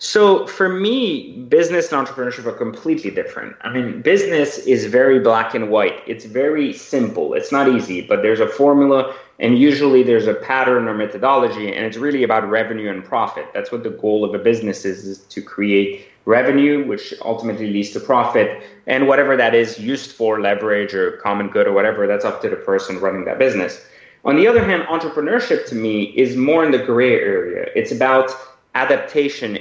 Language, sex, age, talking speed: English, male, 30-49, 190 wpm